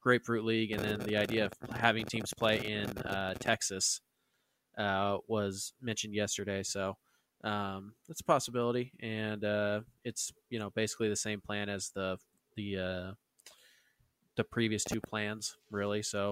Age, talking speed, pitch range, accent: 20-39, 150 wpm, 100-115 Hz, American